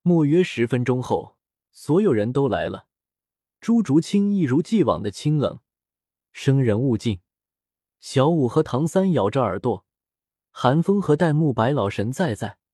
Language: Chinese